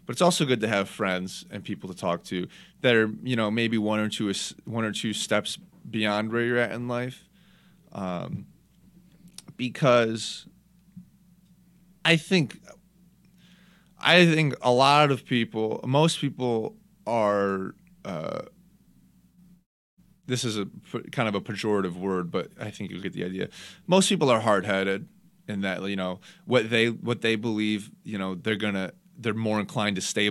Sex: male